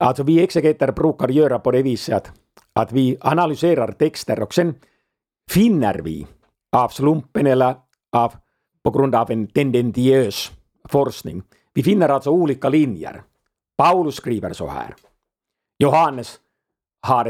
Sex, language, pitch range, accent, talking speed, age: male, Swedish, 110-145 Hz, Finnish, 130 wpm, 50-69